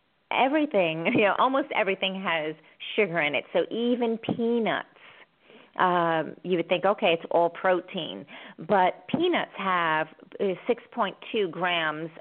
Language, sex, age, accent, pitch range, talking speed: English, female, 40-59, American, 170-215 Hz, 125 wpm